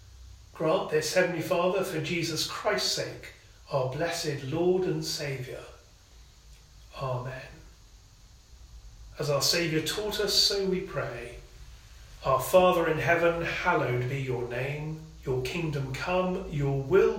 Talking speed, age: 120 wpm, 40-59